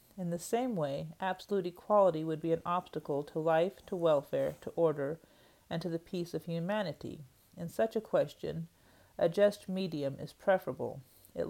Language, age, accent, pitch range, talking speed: English, 40-59, American, 155-185 Hz, 165 wpm